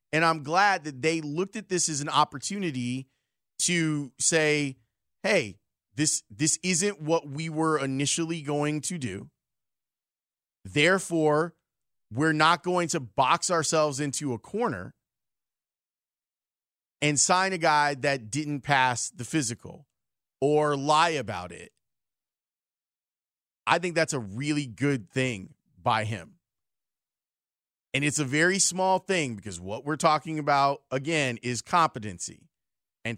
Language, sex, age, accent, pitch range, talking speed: English, male, 30-49, American, 125-160 Hz, 130 wpm